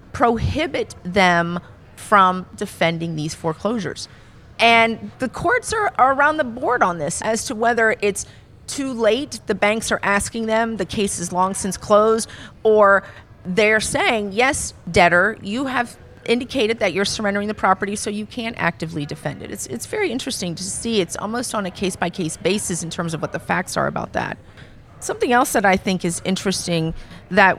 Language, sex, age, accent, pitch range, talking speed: English, female, 40-59, American, 170-220 Hz, 175 wpm